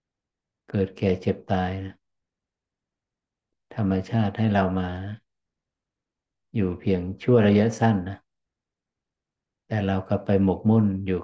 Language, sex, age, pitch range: Thai, male, 60-79, 95-110 Hz